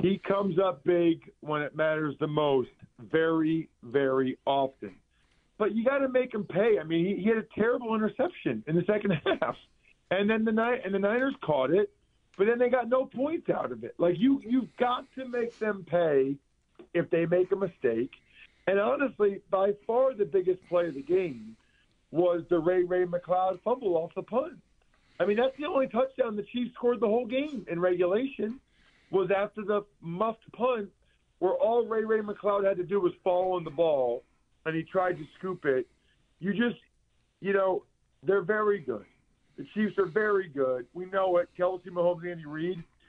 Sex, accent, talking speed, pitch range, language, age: male, American, 190 wpm, 170-220 Hz, English, 50-69